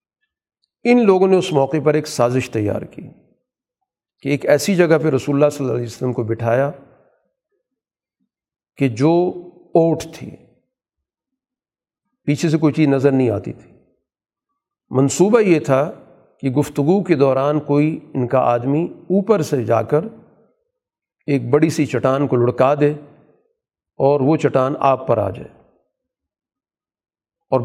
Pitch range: 130-160 Hz